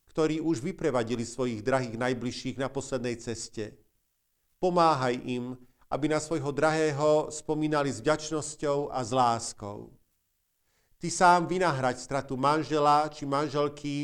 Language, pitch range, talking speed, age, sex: Slovak, 125-160 Hz, 120 wpm, 50-69, male